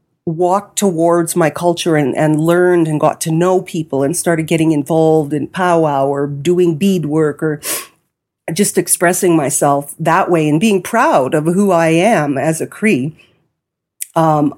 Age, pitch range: 40-59, 150-180 Hz